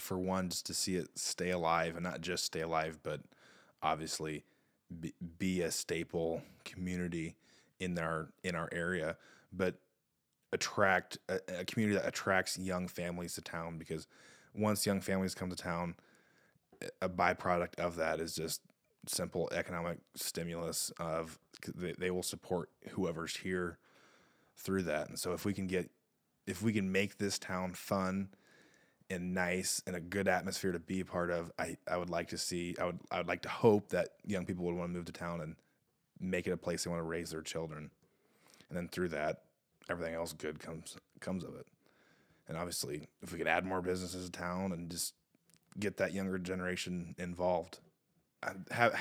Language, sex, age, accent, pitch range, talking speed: English, male, 20-39, American, 80-95 Hz, 180 wpm